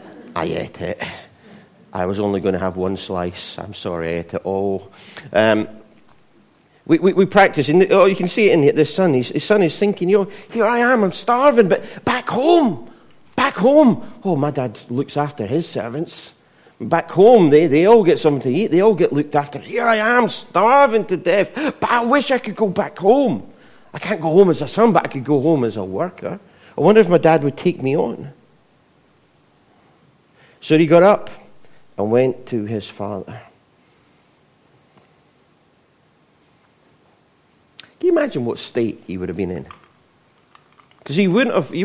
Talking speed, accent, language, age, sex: 185 wpm, British, English, 40-59, male